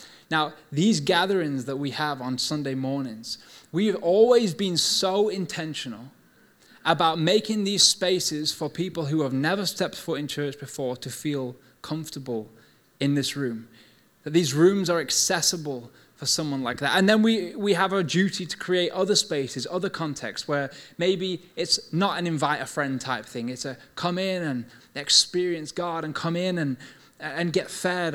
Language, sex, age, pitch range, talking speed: English, male, 20-39, 135-175 Hz, 170 wpm